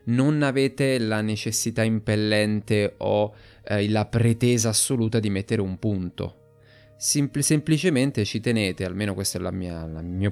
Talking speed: 135 wpm